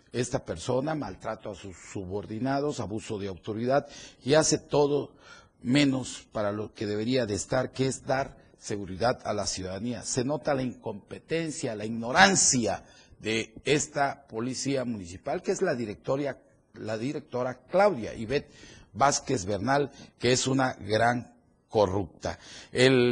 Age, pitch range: 40-59, 110-145 Hz